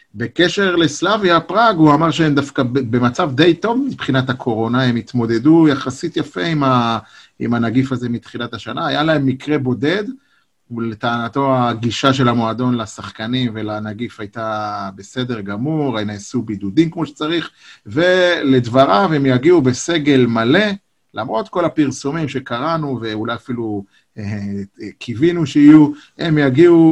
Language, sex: Hebrew, male